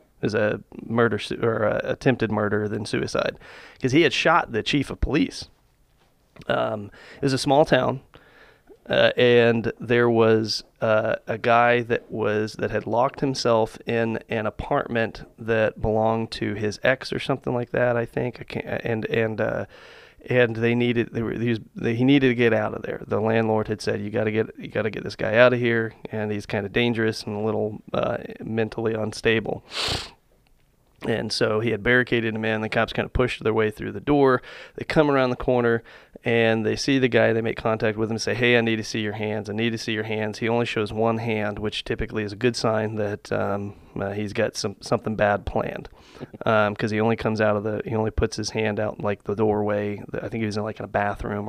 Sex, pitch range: male, 105-120 Hz